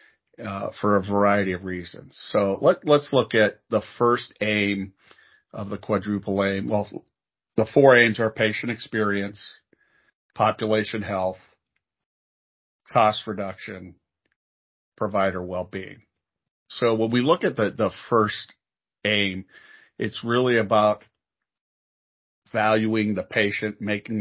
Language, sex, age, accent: English, male, 40-59, American